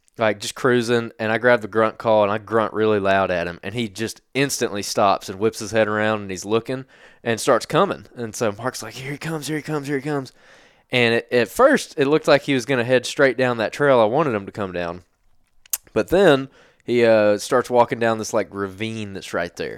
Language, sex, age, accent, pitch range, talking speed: English, male, 20-39, American, 105-125 Hz, 240 wpm